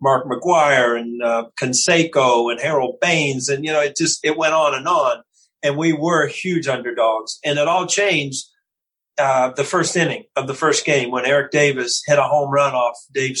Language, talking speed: English, 195 wpm